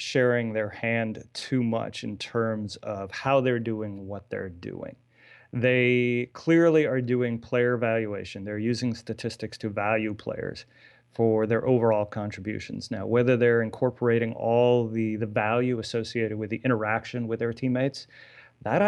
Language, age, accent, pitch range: English, 30-49, American, 110-125 Hz